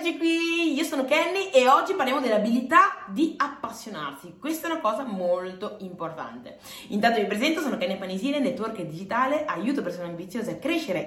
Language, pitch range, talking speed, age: Italian, 180-280 Hz, 155 wpm, 20-39